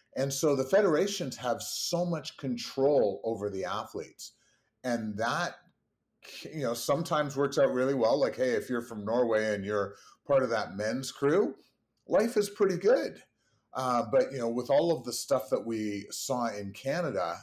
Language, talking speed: English, 175 wpm